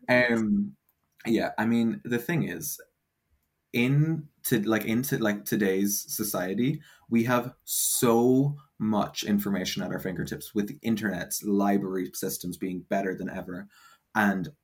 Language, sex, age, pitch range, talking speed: English, male, 20-39, 100-130 Hz, 135 wpm